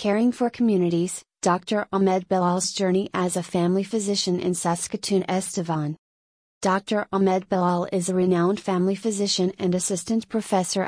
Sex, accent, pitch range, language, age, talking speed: female, American, 180-195 Hz, English, 30-49, 140 wpm